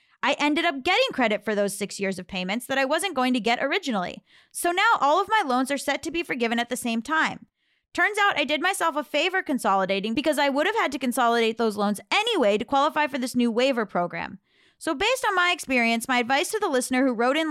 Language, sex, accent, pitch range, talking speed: English, female, American, 235-315 Hz, 245 wpm